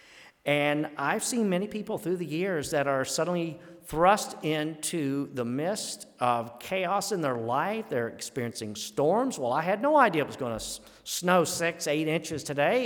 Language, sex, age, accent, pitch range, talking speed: English, male, 50-69, American, 130-180 Hz, 170 wpm